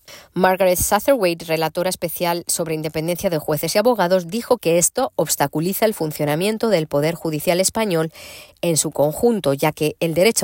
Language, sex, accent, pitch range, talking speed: Spanish, female, Spanish, 155-190 Hz, 155 wpm